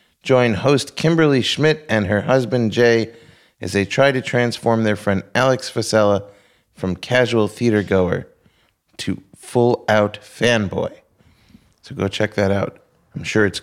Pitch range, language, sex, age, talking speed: 100-125 Hz, English, male, 30-49, 135 wpm